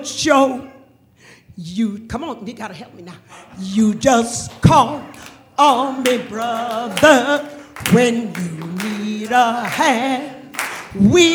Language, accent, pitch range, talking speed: English, American, 215-295 Hz, 110 wpm